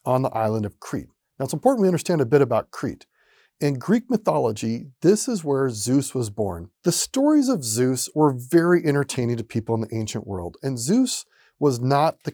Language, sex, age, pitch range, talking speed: English, male, 40-59, 120-175 Hz, 200 wpm